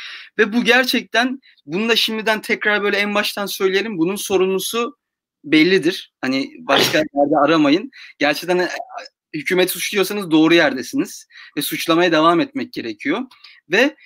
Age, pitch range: 40-59, 175-240 Hz